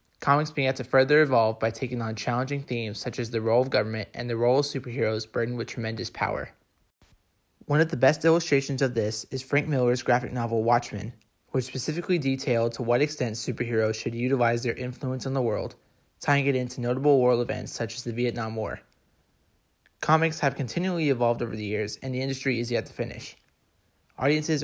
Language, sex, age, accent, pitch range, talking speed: English, male, 20-39, American, 115-135 Hz, 190 wpm